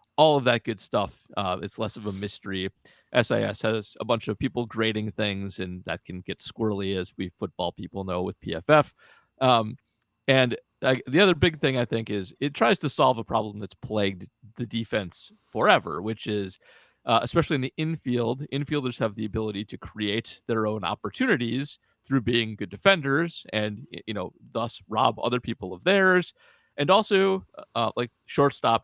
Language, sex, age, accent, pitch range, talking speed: English, male, 40-59, American, 105-130 Hz, 180 wpm